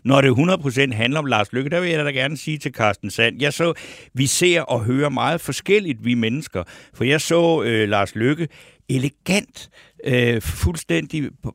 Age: 60-79